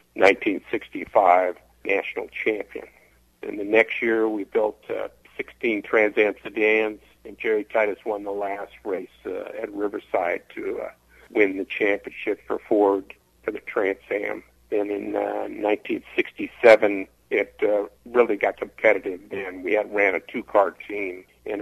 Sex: male